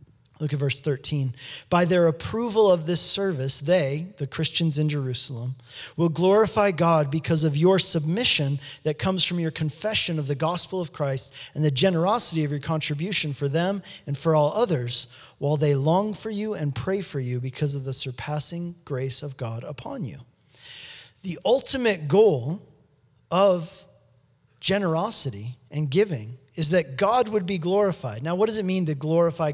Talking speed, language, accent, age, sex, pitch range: 165 wpm, English, American, 40-59, male, 140-185 Hz